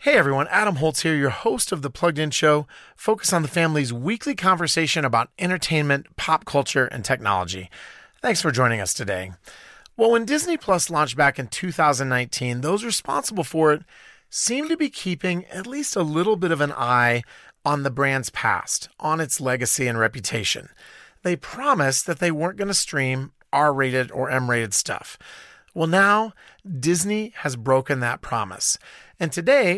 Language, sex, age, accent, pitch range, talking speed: English, male, 30-49, American, 135-185 Hz, 165 wpm